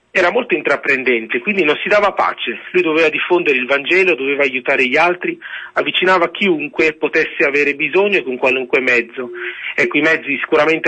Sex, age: male, 40-59